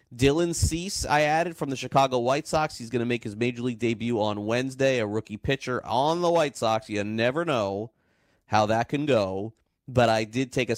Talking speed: 210 wpm